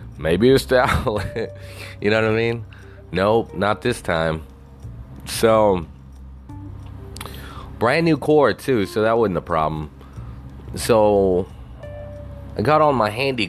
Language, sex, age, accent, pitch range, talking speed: English, male, 20-39, American, 70-105 Hz, 125 wpm